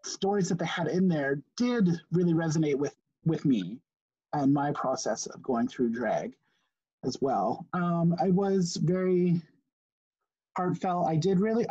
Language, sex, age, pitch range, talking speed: English, male, 30-49, 160-190 Hz, 150 wpm